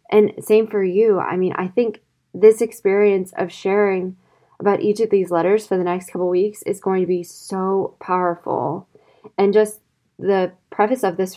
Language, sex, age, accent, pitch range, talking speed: English, female, 20-39, American, 180-210 Hz, 180 wpm